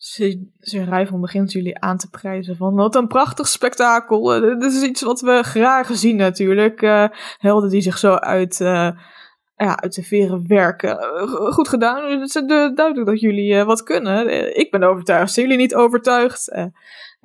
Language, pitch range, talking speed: Dutch, 180-215 Hz, 185 wpm